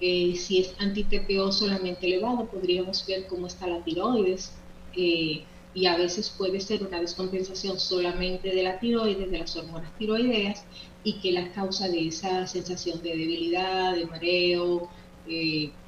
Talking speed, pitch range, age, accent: 150 wpm, 180-195 Hz, 30-49, American